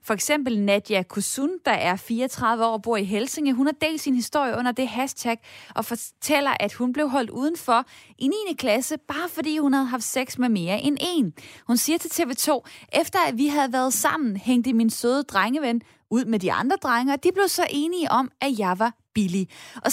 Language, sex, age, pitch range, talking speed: Danish, female, 20-39, 215-285 Hz, 210 wpm